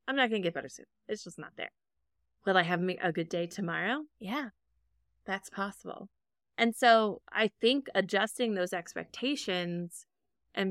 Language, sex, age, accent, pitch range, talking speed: English, female, 20-39, American, 175-220 Hz, 160 wpm